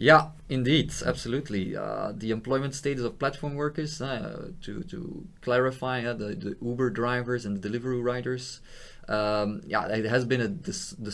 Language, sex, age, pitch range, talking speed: English, male, 20-39, 105-130 Hz, 165 wpm